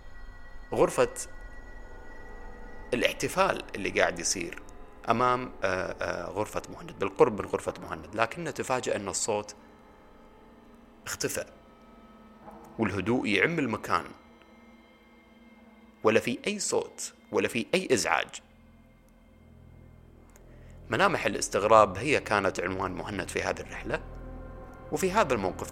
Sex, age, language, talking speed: male, 30-49, Arabic, 100 wpm